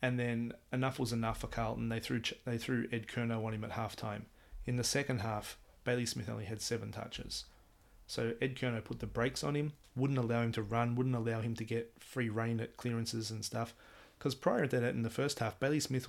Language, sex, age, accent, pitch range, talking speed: English, male, 30-49, Australian, 105-120 Hz, 230 wpm